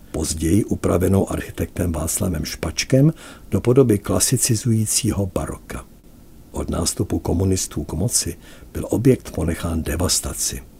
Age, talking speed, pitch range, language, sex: 60-79, 100 wpm, 80-105 Hz, Czech, male